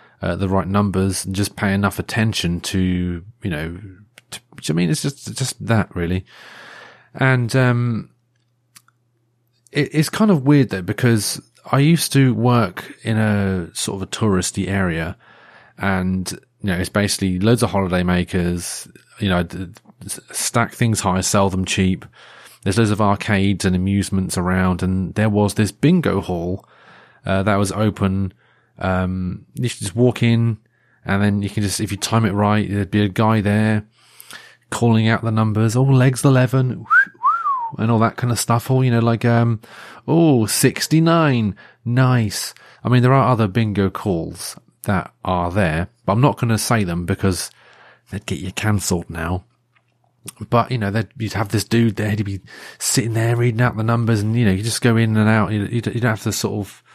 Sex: male